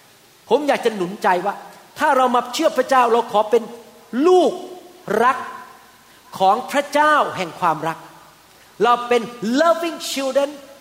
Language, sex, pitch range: Thai, male, 215-280 Hz